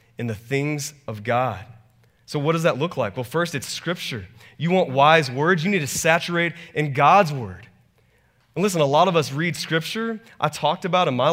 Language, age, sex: English, 30-49, male